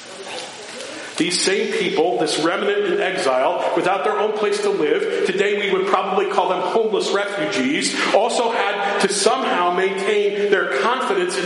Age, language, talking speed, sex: 50-69, English, 150 wpm, male